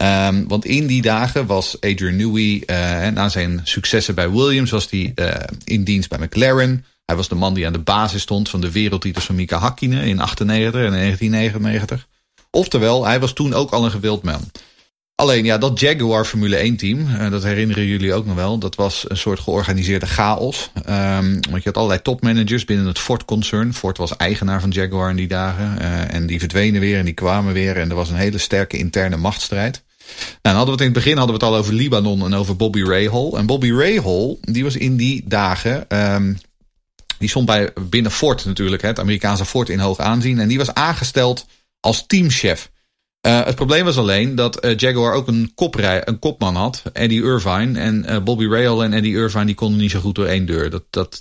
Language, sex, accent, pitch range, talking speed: Dutch, male, Dutch, 95-115 Hz, 215 wpm